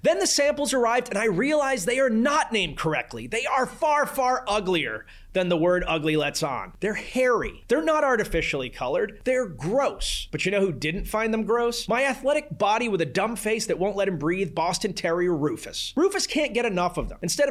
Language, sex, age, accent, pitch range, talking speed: English, male, 30-49, American, 175-245 Hz, 210 wpm